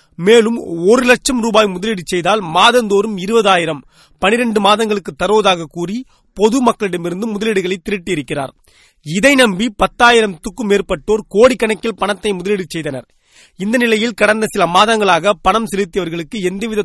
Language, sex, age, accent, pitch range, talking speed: Tamil, male, 30-49, native, 185-230 Hz, 110 wpm